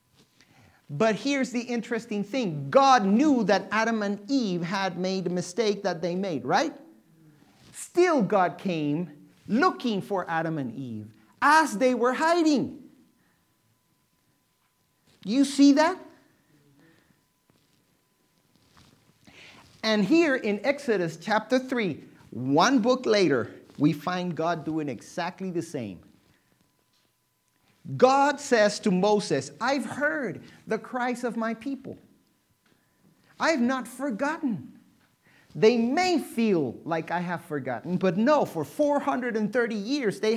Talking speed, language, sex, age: 115 wpm, English, male, 50-69